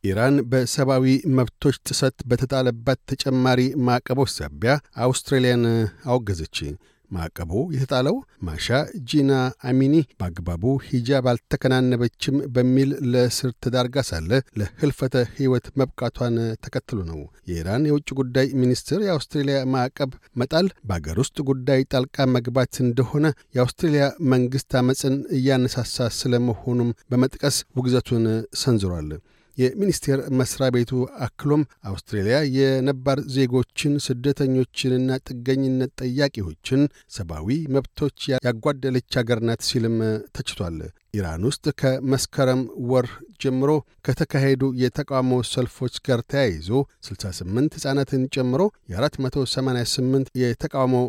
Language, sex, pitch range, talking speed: Amharic, male, 120-135 Hz, 95 wpm